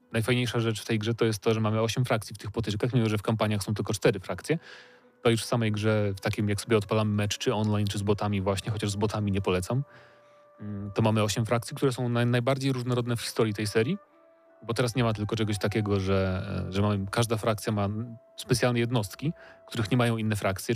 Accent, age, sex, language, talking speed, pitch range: native, 30-49, male, Polish, 225 wpm, 105-125 Hz